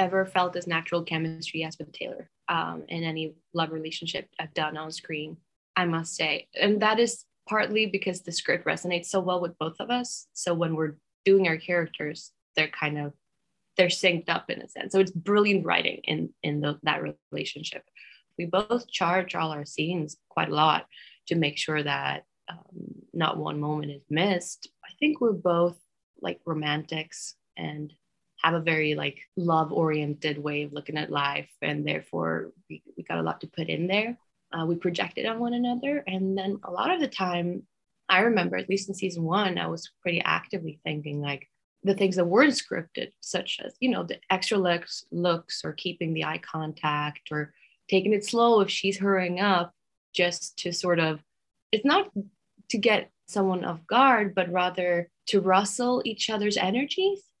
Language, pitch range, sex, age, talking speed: English, 160-195 Hz, female, 20-39, 185 wpm